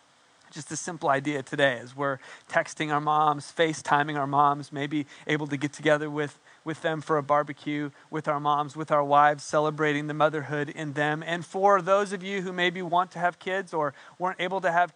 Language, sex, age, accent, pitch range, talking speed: English, male, 30-49, American, 150-225 Hz, 205 wpm